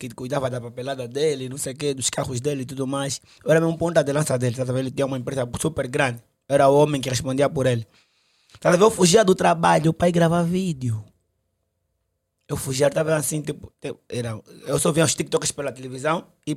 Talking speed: 215 wpm